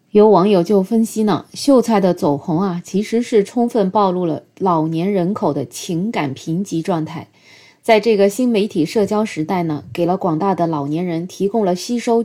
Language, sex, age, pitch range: Chinese, female, 20-39, 165-220 Hz